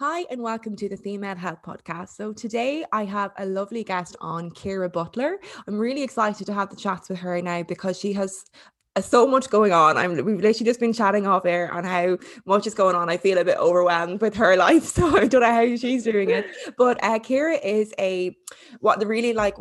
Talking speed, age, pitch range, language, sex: 225 wpm, 20-39, 175-215 Hz, English, female